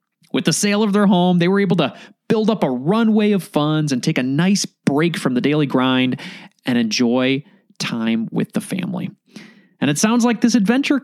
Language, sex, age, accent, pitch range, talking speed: English, male, 30-49, American, 165-225 Hz, 200 wpm